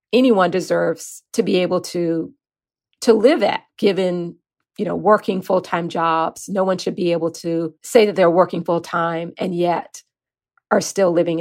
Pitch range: 170-215 Hz